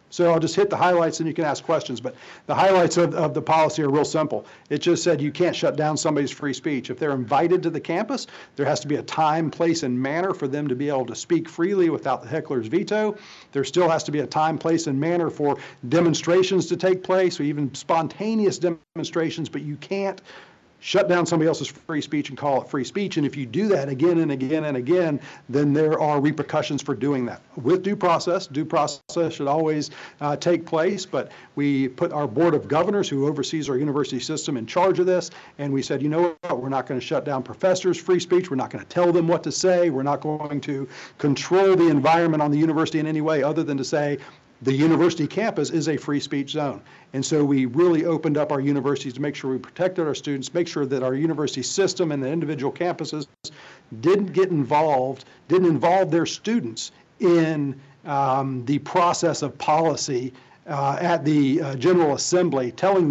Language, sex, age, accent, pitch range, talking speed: English, male, 50-69, American, 140-170 Hz, 215 wpm